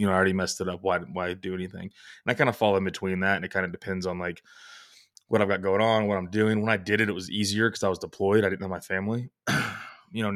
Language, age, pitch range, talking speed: English, 20-39, 95-100 Hz, 300 wpm